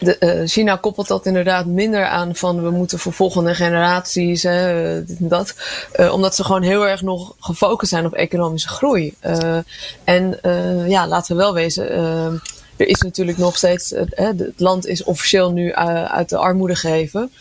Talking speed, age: 185 wpm, 20-39